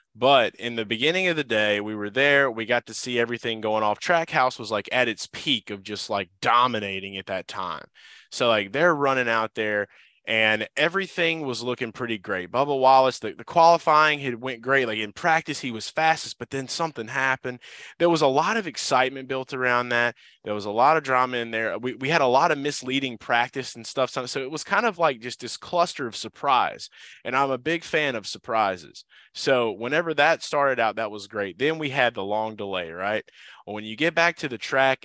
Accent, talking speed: American, 220 wpm